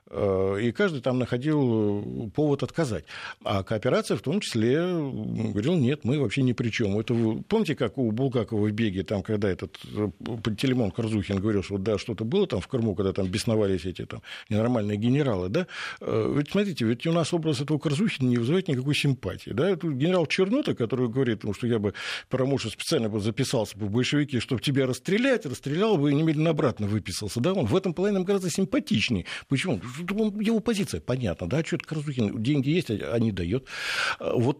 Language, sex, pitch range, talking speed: Russian, male, 115-170 Hz, 180 wpm